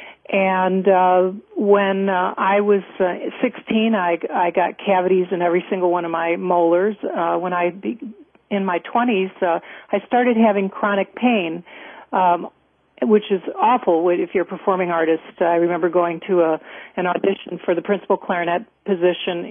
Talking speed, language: 160 wpm, English